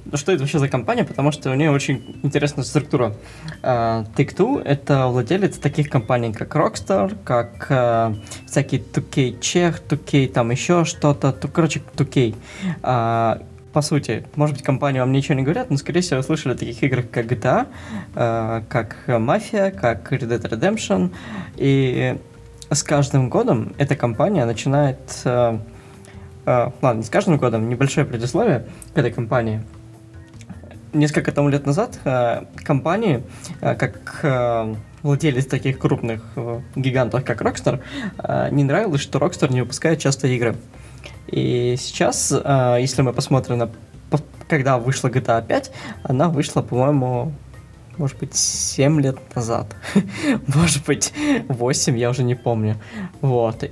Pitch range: 120-150 Hz